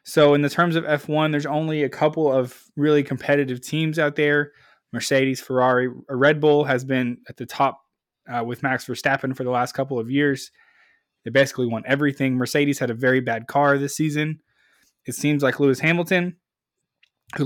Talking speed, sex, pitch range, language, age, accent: 180 wpm, male, 125-150 Hz, English, 20-39, American